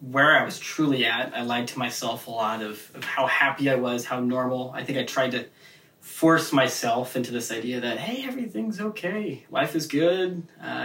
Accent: American